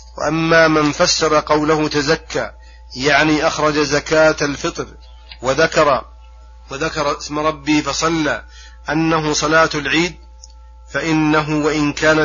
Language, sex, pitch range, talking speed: Arabic, male, 130-155 Hz, 100 wpm